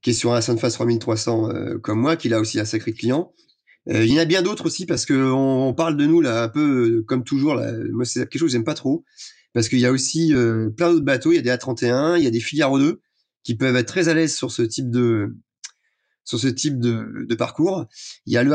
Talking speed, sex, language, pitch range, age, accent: 275 wpm, male, French, 125-165 Hz, 30-49, French